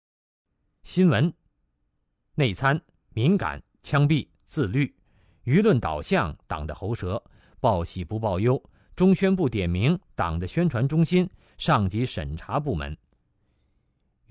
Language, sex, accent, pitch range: Chinese, male, native, 95-150 Hz